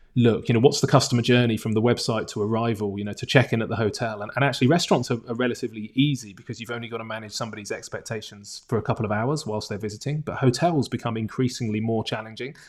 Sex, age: male, 30-49